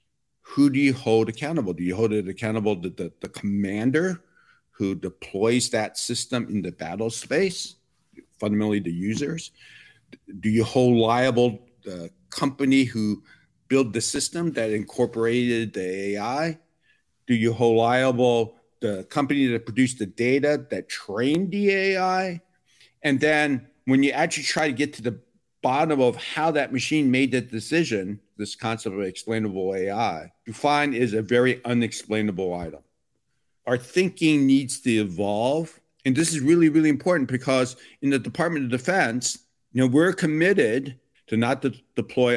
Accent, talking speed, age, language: American, 155 wpm, 50-69, English